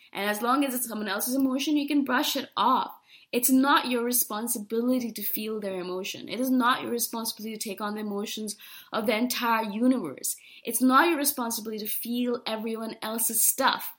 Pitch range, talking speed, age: 210-260 Hz, 190 wpm, 20-39